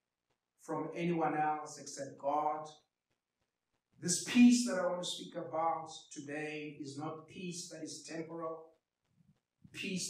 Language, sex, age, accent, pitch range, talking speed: English, male, 50-69, South African, 150-175 Hz, 125 wpm